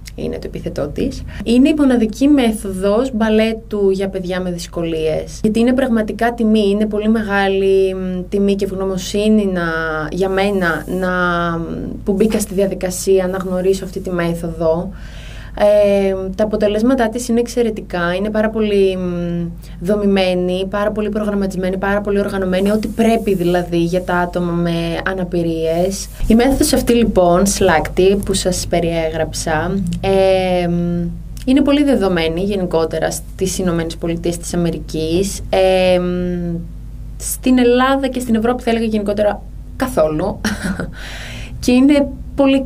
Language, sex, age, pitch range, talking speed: Greek, female, 20-39, 180-215 Hz, 120 wpm